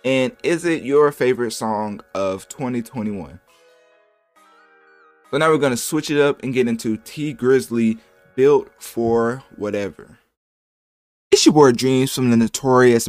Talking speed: 140 wpm